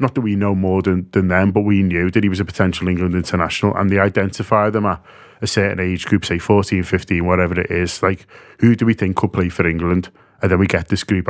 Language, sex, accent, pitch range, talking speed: English, male, British, 90-105 Hz, 255 wpm